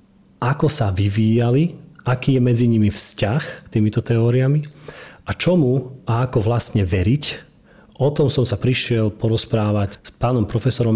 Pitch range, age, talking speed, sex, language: 110-125 Hz, 30-49, 140 wpm, male, Slovak